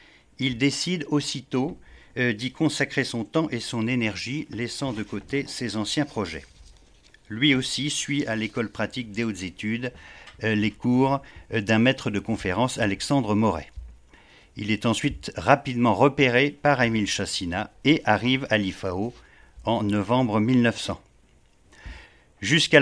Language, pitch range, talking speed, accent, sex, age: French, 105-130 Hz, 135 wpm, French, male, 50-69